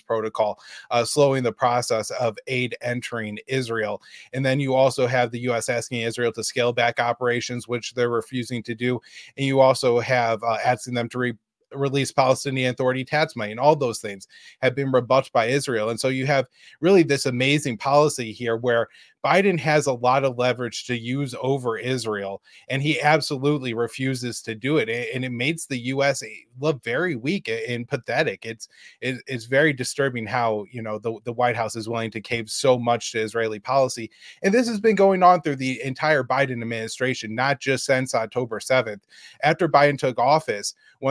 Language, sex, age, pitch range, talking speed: English, male, 20-39, 120-140 Hz, 185 wpm